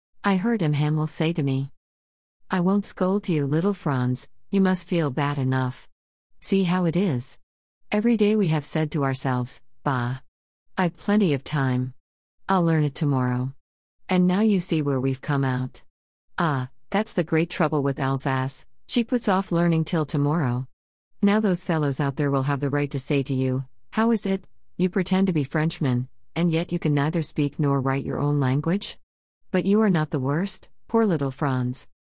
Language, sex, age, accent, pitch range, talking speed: Malayalam, female, 50-69, American, 130-175 Hz, 185 wpm